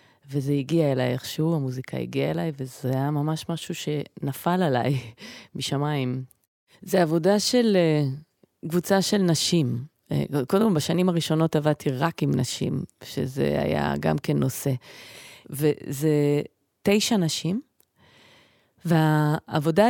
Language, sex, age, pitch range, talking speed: Hebrew, female, 30-49, 145-190 Hz, 115 wpm